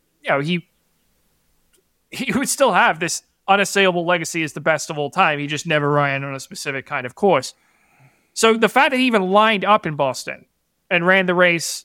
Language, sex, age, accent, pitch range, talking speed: English, male, 30-49, American, 155-195 Hz, 205 wpm